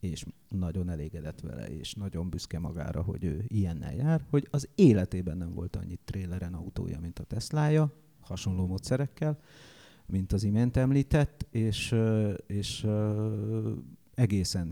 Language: Hungarian